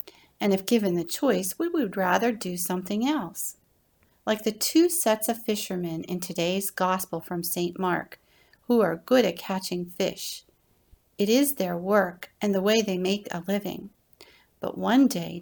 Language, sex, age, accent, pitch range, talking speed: English, female, 40-59, American, 180-230 Hz, 165 wpm